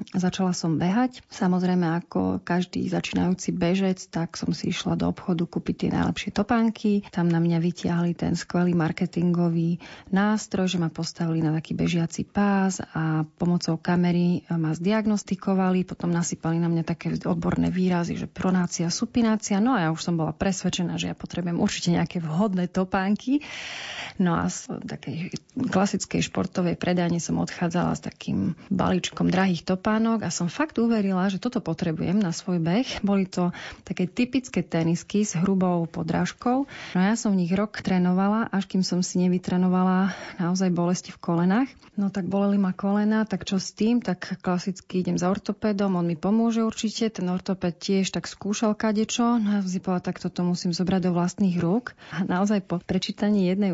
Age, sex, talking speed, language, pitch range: 30-49, female, 165 wpm, Slovak, 175-205 Hz